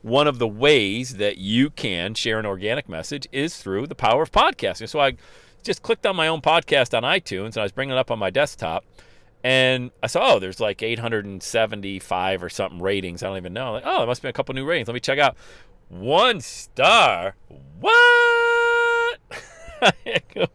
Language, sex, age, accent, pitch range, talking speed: English, male, 40-59, American, 115-170 Hz, 195 wpm